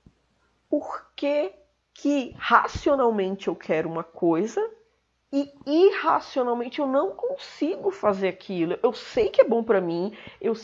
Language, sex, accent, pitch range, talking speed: Portuguese, female, Brazilian, 210-305 Hz, 130 wpm